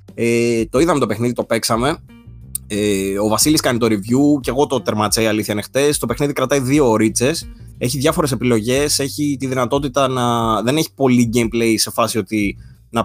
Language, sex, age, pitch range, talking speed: Greek, male, 20-39, 110-140 Hz, 180 wpm